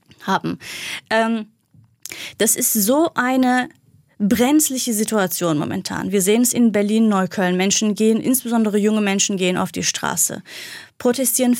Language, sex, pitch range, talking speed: German, female, 200-260 Hz, 125 wpm